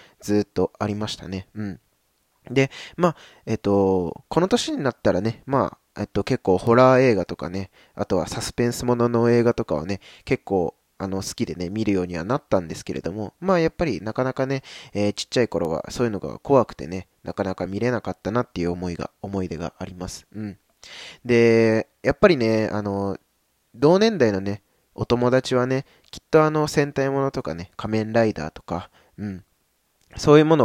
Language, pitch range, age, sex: Japanese, 95-130 Hz, 20-39, male